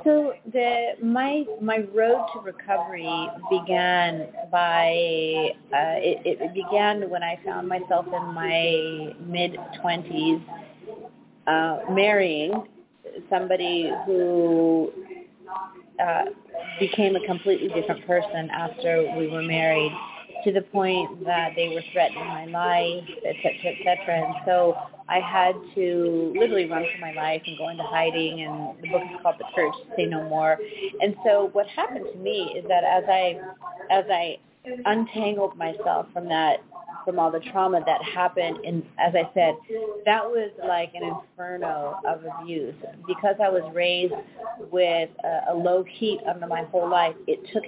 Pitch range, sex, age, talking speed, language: 170-215 Hz, female, 30-49, 150 wpm, English